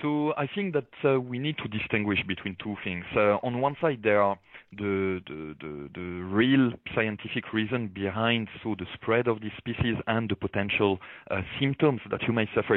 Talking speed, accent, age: 180 wpm, French, 30-49